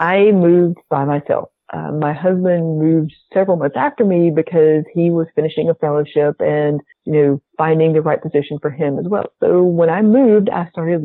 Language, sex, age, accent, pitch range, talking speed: English, female, 40-59, American, 145-175 Hz, 190 wpm